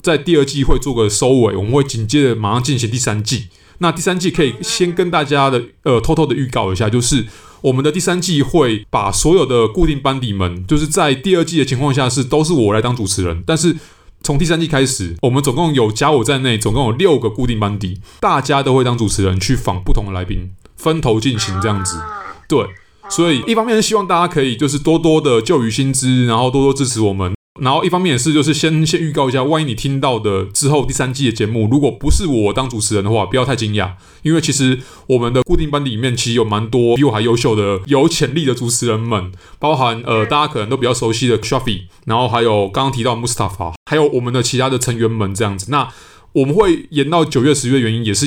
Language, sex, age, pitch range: Chinese, male, 20-39, 110-145 Hz